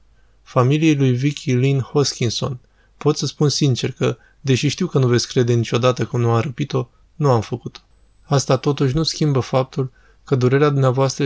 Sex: male